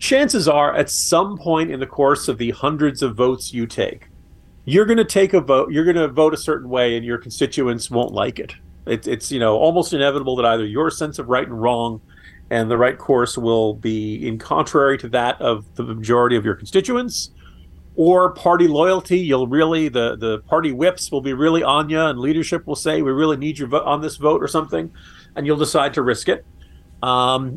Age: 40-59